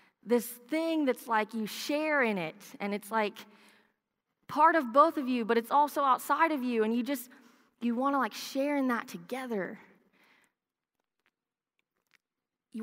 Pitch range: 190-245 Hz